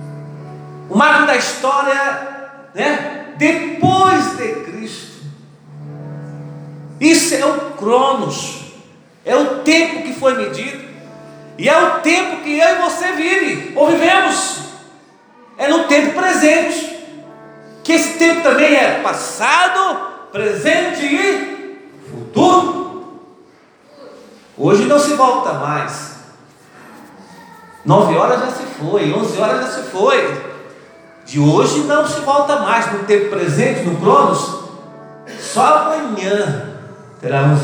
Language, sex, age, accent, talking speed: Portuguese, male, 40-59, Brazilian, 115 wpm